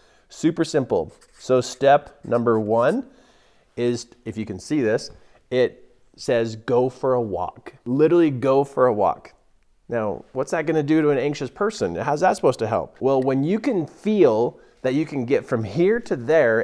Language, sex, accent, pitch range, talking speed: English, male, American, 125-185 Hz, 185 wpm